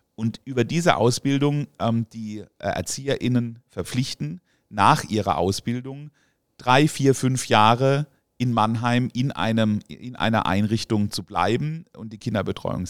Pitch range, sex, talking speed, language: 110-130 Hz, male, 125 wpm, German